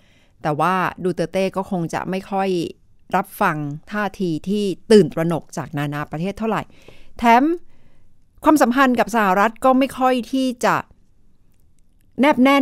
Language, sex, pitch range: Thai, female, 165-225 Hz